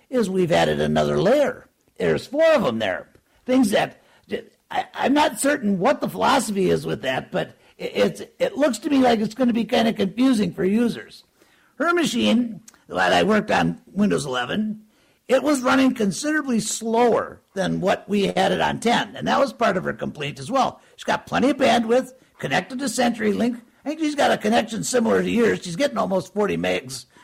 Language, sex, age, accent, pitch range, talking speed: English, male, 60-79, American, 210-265 Hz, 200 wpm